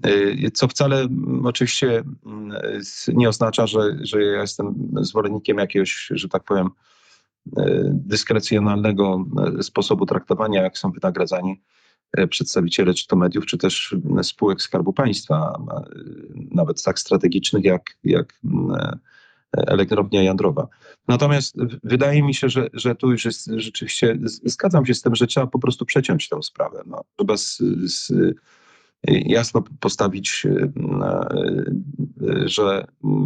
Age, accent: 30-49, native